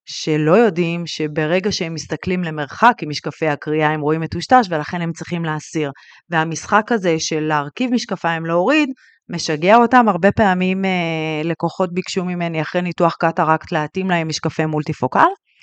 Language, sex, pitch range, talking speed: English, female, 160-210 Hz, 145 wpm